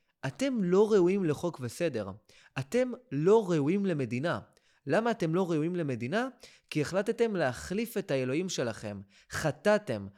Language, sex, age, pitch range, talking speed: Hebrew, male, 20-39, 145-225 Hz, 125 wpm